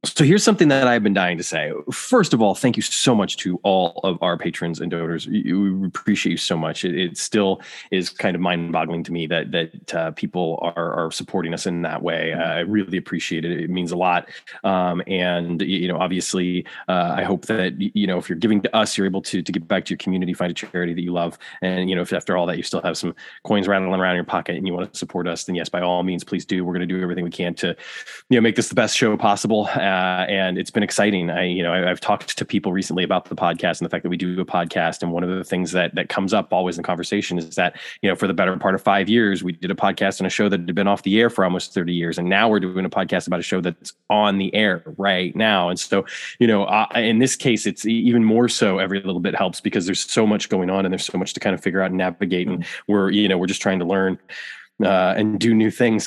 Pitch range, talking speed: 90-105 Hz, 280 wpm